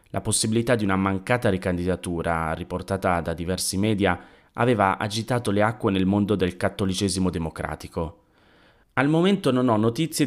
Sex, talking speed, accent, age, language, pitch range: male, 140 wpm, native, 30-49, Italian, 95-120 Hz